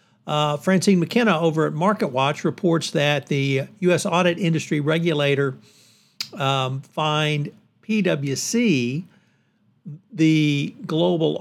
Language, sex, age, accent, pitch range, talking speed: English, male, 60-79, American, 135-175 Hz, 95 wpm